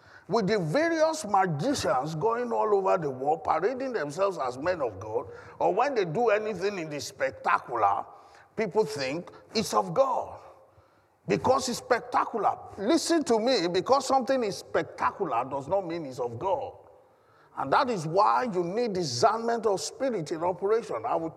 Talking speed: 160 wpm